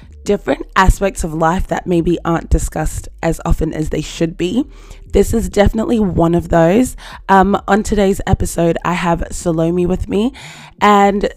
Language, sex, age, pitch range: English, female, 20-39, 165-195 Hz